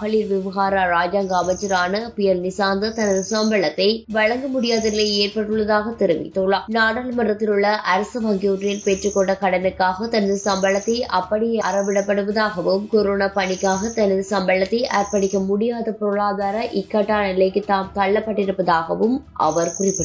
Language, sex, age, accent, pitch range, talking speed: English, female, 20-39, Indian, 195-220 Hz, 95 wpm